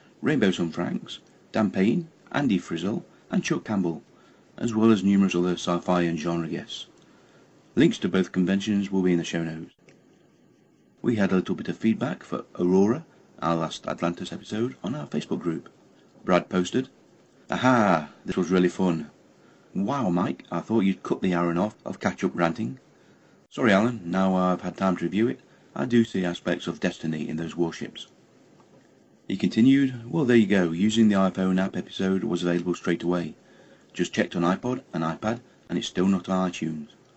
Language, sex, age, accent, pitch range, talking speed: English, male, 40-59, British, 85-105 Hz, 180 wpm